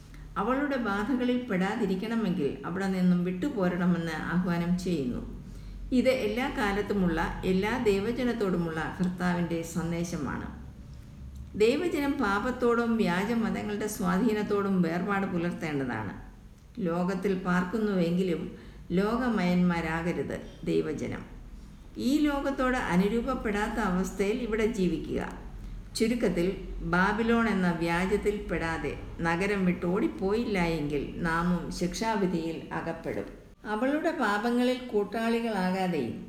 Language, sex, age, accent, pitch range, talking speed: Malayalam, female, 50-69, native, 175-230 Hz, 70 wpm